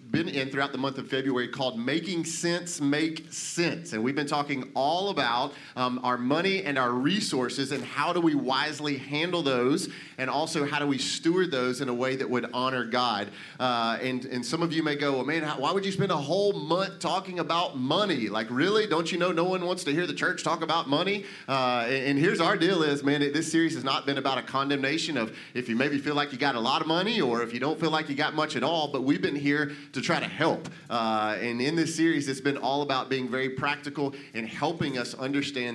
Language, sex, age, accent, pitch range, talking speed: English, male, 30-49, American, 130-165 Hz, 240 wpm